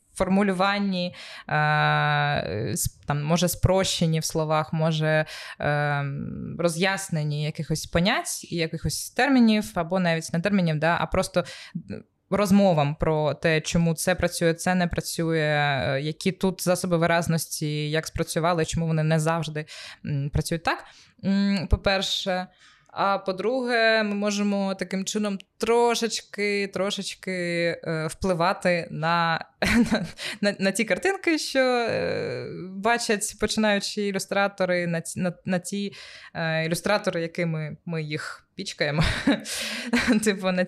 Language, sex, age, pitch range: Ukrainian, female, 20-39, 160-195 Hz